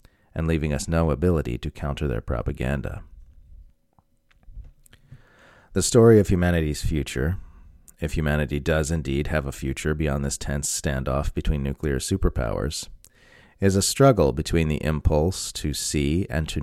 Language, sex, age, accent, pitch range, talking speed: English, male, 30-49, American, 75-90 Hz, 135 wpm